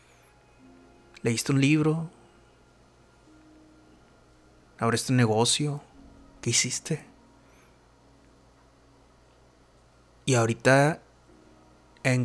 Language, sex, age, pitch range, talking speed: English, male, 30-49, 100-135 Hz, 55 wpm